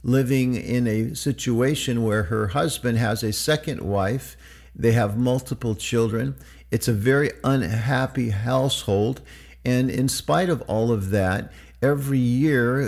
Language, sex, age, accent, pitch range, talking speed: English, male, 50-69, American, 105-130 Hz, 135 wpm